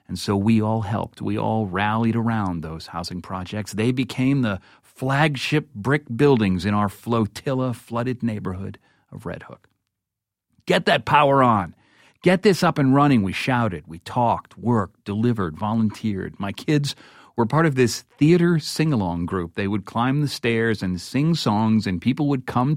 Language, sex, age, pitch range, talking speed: English, male, 40-59, 95-125 Hz, 165 wpm